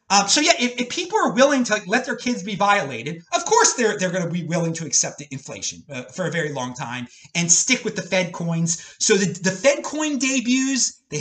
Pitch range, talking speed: 160-250 Hz, 240 wpm